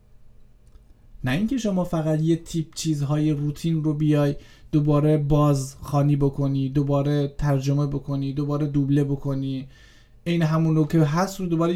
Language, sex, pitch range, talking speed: Persian, male, 120-160 Hz, 140 wpm